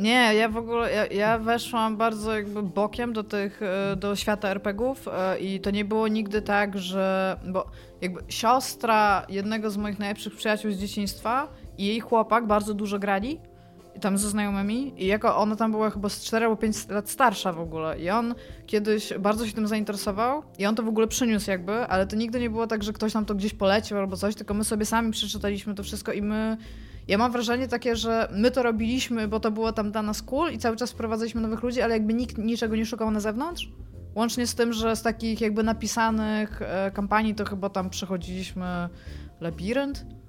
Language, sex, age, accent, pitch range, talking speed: Polish, female, 20-39, native, 200-235 Hz, 200 wpm